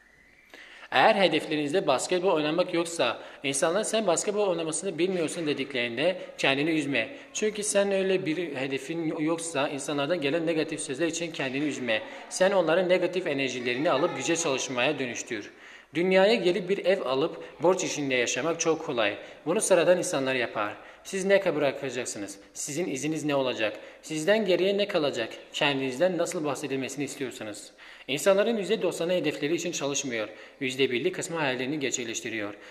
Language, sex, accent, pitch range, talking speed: Turkish, male, native, 135-180 Hz, 135 wpm